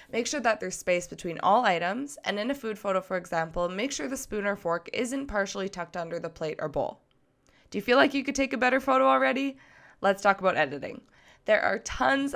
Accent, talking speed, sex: American, 230 wpm, female